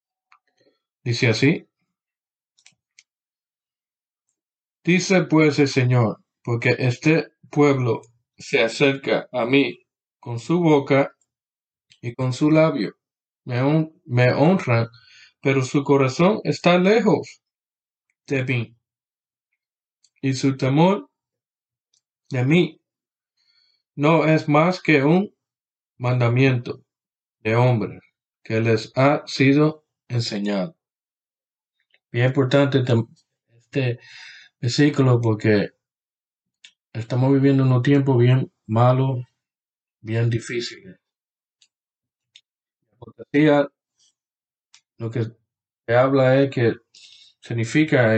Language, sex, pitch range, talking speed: English, male, 115-145 Hz, 90 wpm